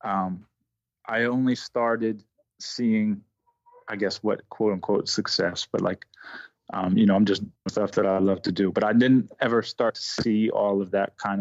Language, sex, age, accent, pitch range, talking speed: English, male, 20-39, American, 95-115 Hz, 185 wpm